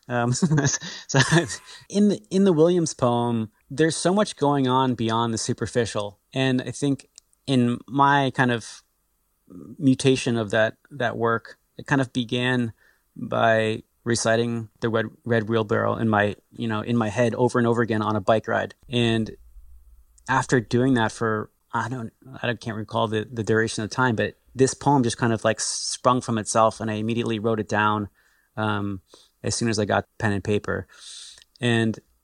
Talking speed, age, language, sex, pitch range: 175 wpm, 30-49, English, male, 110-130 Hz